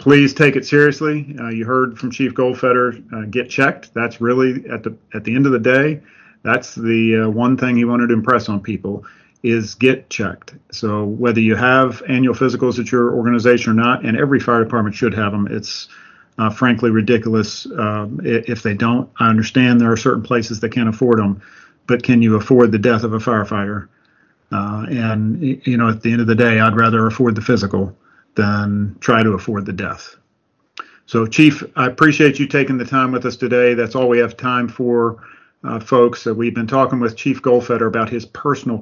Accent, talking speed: American, 205 wpm